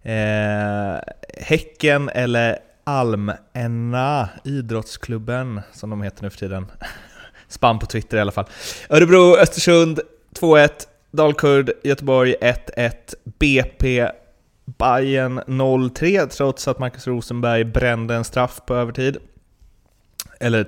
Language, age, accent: Swedish, 20-39, native